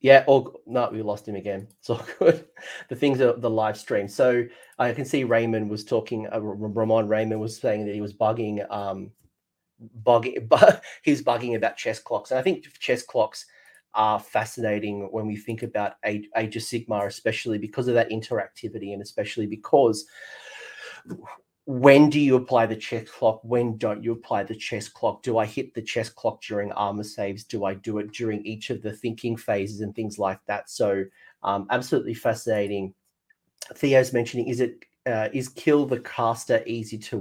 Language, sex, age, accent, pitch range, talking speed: English, male, 30-49, Australian, 105-120 Hz, 180 wpm